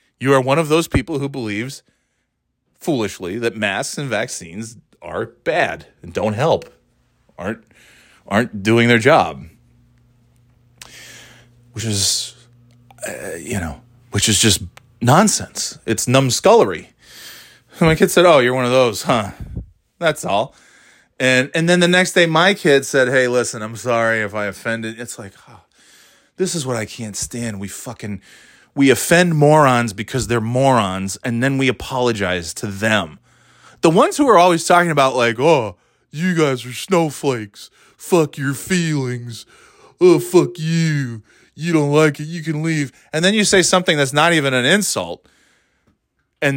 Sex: male